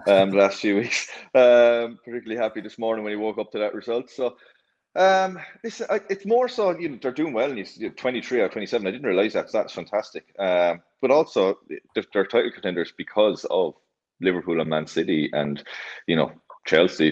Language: English